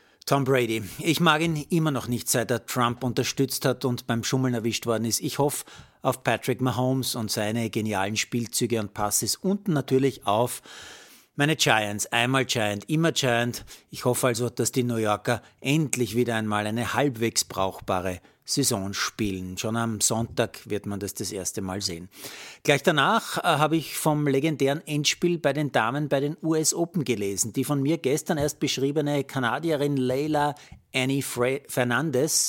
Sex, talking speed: male, 165 wpm